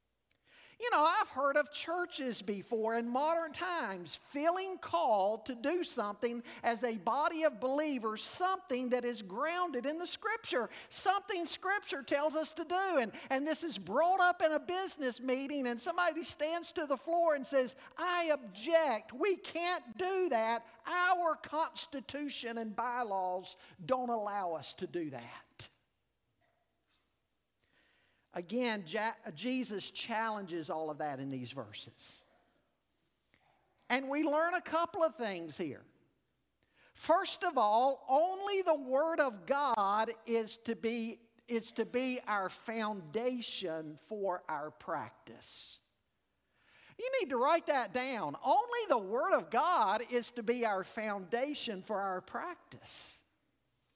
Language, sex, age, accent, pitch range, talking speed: English, male, 50-69, American, 220-325 Hz, 135 wpm